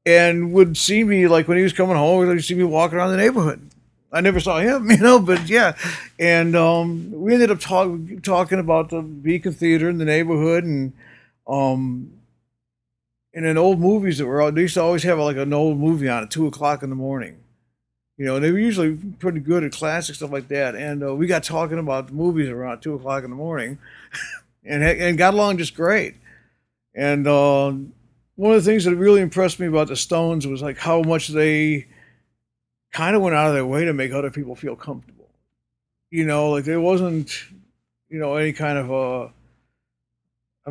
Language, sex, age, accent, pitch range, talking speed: English, male, 50-69, American, 135-175 Hz, 205 wpm